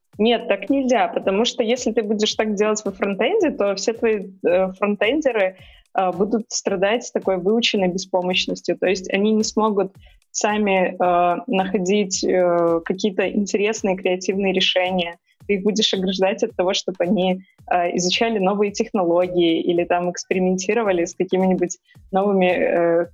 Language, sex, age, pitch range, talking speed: Russian, female, 20-39, 180-215 Hz, 145 wpm